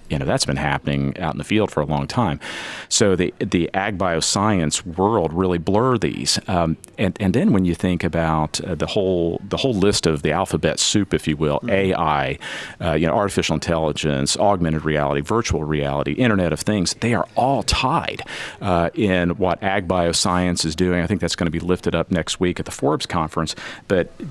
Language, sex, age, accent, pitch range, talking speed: English, male, 40-59, American, 80-95 Hz, 200 wpm